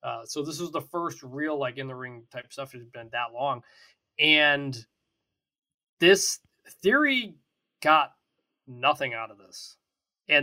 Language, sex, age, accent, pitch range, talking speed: English, male, 20-39, American, 135-210 Hz, 155 wpm